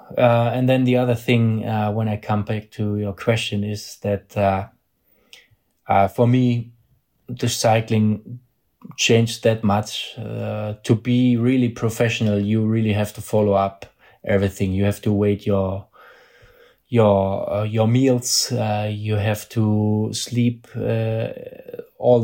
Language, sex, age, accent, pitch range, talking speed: English, male, 20-39, German, 105-115 Hz, 145 wpm